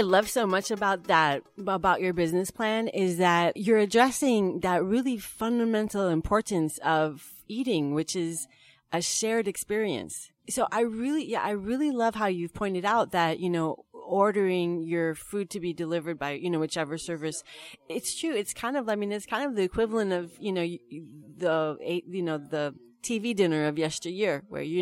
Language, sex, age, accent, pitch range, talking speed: English, female, 30-49, American, 160-210 Hz, 180 wpm